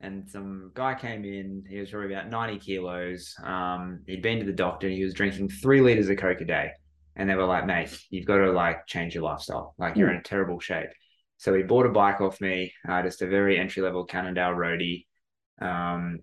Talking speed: 220 wpm